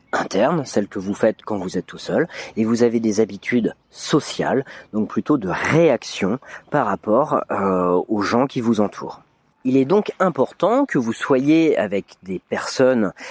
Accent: French